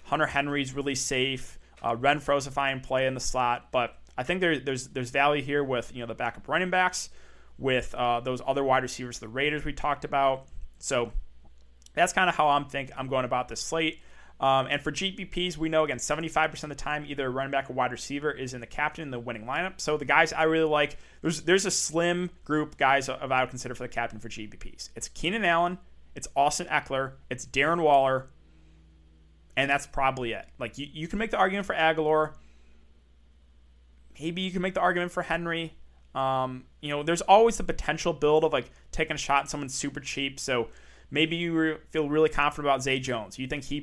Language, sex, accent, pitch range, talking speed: English, male, American, 125-155 Hz, 215 wpm